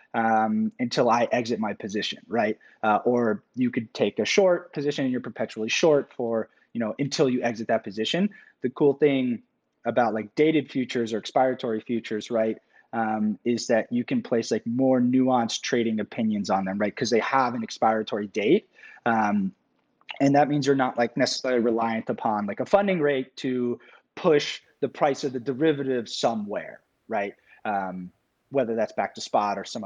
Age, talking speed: 20-39, 180 wpm